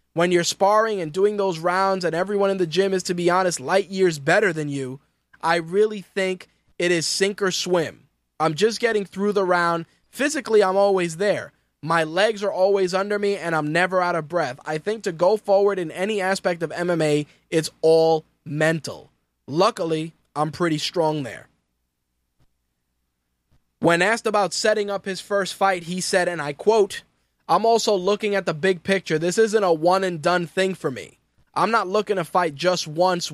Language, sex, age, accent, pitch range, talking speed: English, male, 20-39, American, 160-200 Hz, 185 wpm